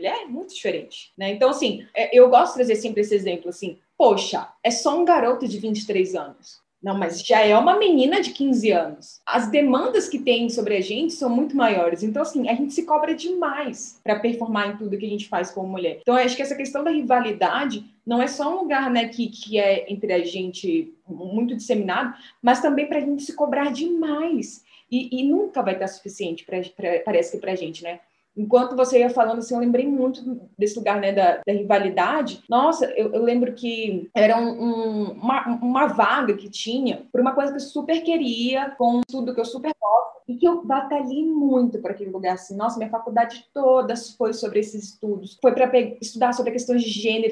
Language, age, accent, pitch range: Portuguese, 20-39, Brazilian, 210-275 Hz